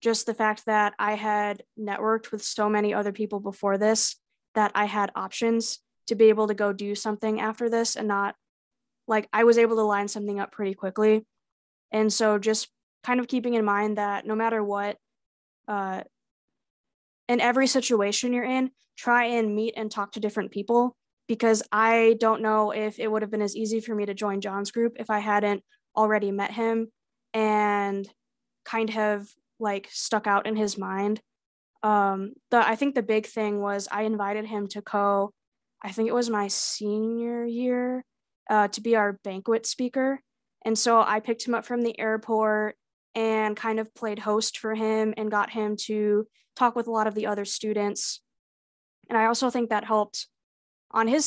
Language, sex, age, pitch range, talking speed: English, female, 20-39, 205-230 Hz, 185 wpm